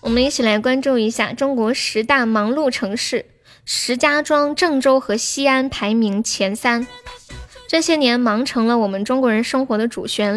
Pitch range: 220-275 Hz